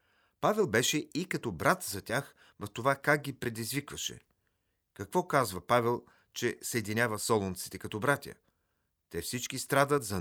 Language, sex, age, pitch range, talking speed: Bulgarian, male, 40-59, 100-130 Hz, 140 wpm